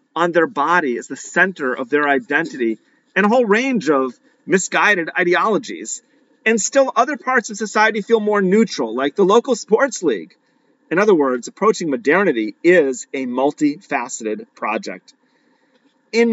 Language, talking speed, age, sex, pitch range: English, 145 wpm, 40-59, male, 135-215 Hz